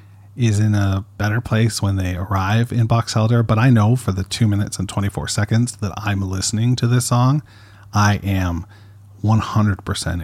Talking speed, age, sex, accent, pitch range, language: 180 wpm, 40-59, male, American, 100-115 Hz, English